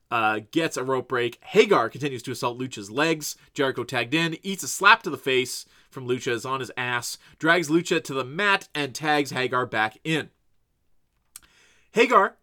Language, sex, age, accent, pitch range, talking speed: English, male, 30-49, American, 130-175 Hz, 180 wpm